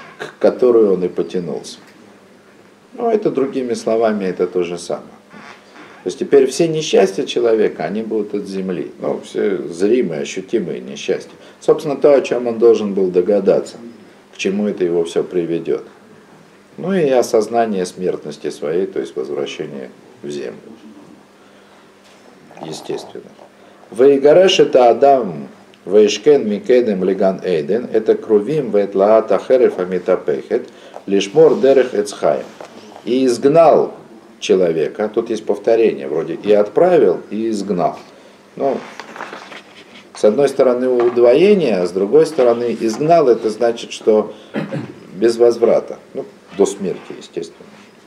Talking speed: 105 wpm